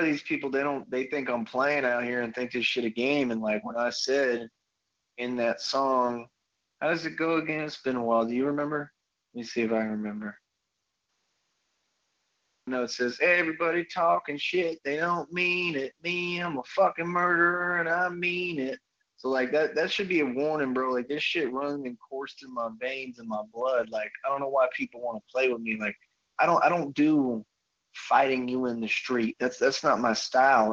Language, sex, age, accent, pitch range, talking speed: English, male, 20-39, American, 115-155 Hz, 220 wpm